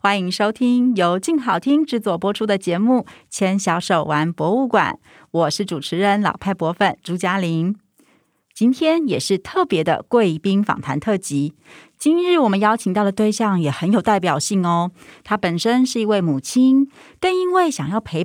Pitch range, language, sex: 185-255 Hz, Chinese, female